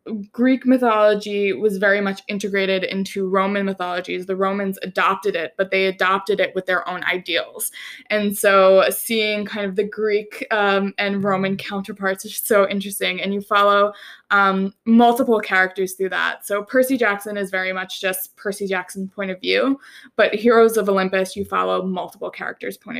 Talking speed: 165 wpm